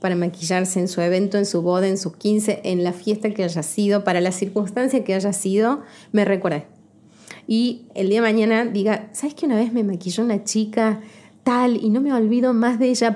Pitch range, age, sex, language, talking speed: 185-225 Hz, 20-39, female, Spanish, 215 wpm